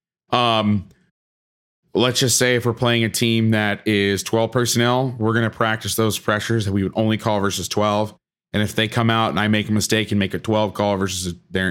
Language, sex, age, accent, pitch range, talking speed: English, male, 30-49, American, 100-115 Hz, 220 wpm